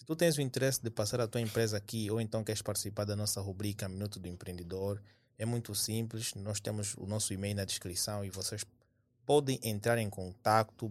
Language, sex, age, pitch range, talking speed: Portuguese, male, 20-39, 105-120 Hz, 205 wpm